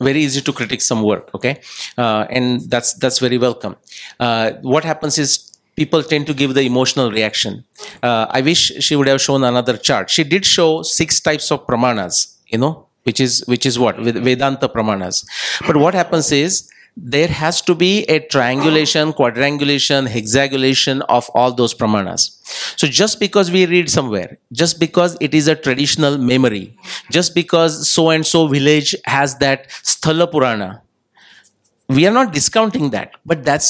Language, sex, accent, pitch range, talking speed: English, male, Indian, 130-170 Hz, 170 wpm